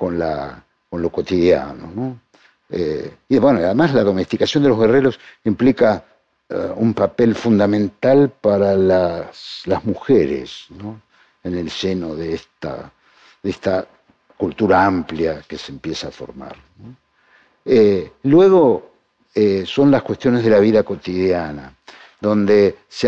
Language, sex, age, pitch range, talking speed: Spanish, male, 50-69, 90-120 Hz, 135 wpm